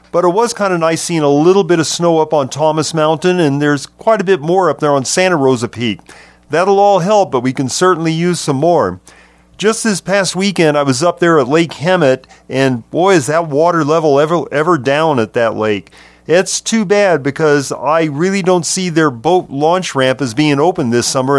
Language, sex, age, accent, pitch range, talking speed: English, male, 40-59, American, 140-175 Hz, 220 wpm